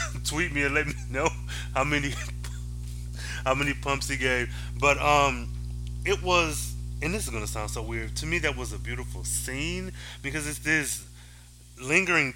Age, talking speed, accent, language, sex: 20-39, 175 wpm, American, English, male